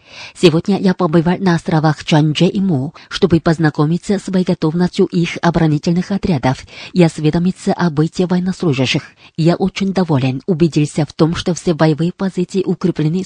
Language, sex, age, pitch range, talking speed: Russian, female, 20-39, 160-185 Hz, 140 wpm